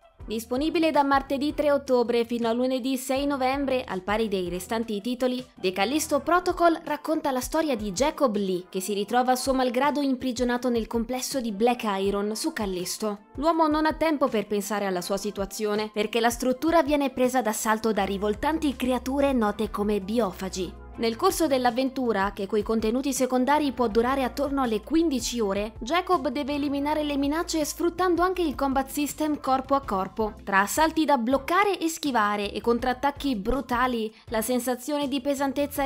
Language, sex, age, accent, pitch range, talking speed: Italian, female, 20-39, native, 215-285 Hz, 165 wpm